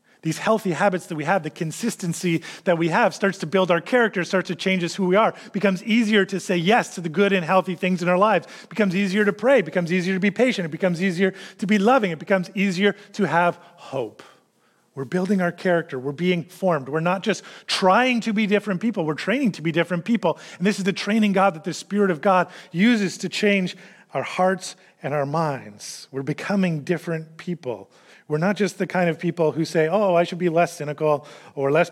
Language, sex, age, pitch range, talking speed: English, male, 30-49, 150-195 Hz, 230 wpm